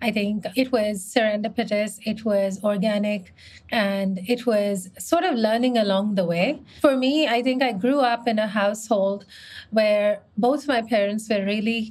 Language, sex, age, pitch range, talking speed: English, female, 30-49, 195-235 Hz, 165 wpm